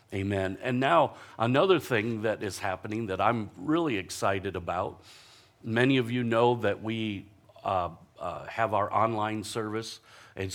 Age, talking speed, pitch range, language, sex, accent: 50-69, 150 wpm, 100-120 Hz, English, male, American